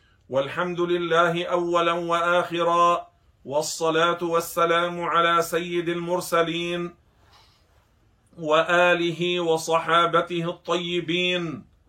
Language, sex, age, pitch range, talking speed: Arabic, male, 50-69, 145-175 Hz, 60 wpm